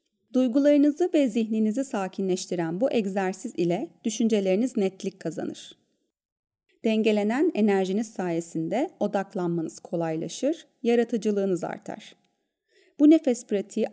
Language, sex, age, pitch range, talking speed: Turkish, female, 40-59, 195-275 Hz, 85 wpm